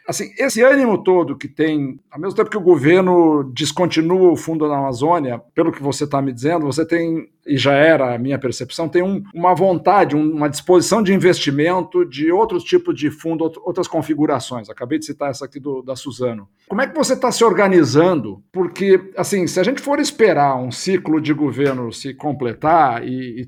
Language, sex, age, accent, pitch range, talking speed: Portuguese, male, 50-69, Brazilian, 145-190 Hz, 195 wpm